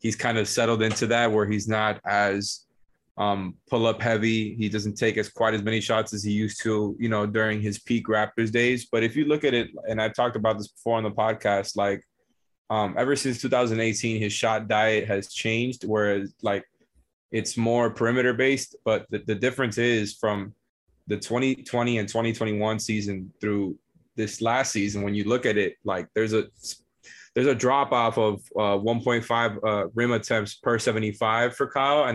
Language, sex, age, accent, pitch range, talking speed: English, male, 20-39, American, 105-120 Hz, 180 wpm